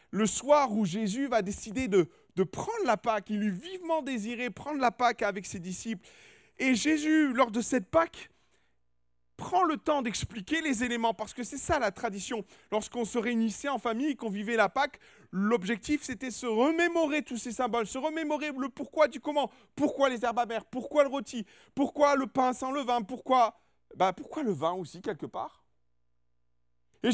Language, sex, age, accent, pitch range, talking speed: French, male, 40-59, French, 190-265 Hz, 185 wpm